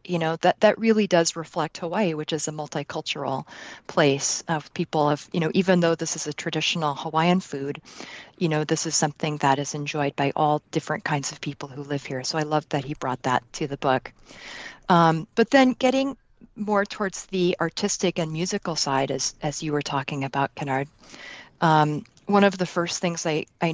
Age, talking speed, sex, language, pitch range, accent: 40-59, 195 wpm, female, English, 150-175 Hz, American